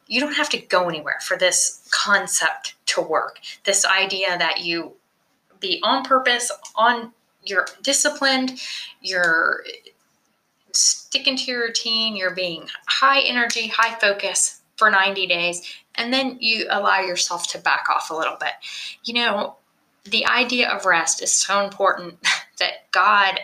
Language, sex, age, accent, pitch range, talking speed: English, female, 20-39, American, 175-240 Hz, 145 wpm